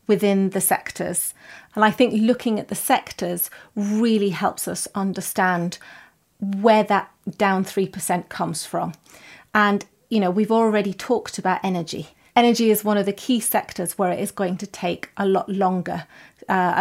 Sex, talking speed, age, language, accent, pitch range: female, 160 wpm, 30-49, English, British, 190-225 Hz